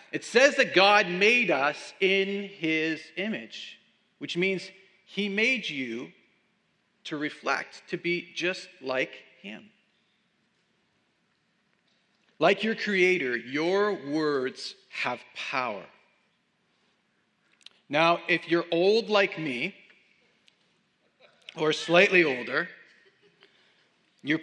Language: English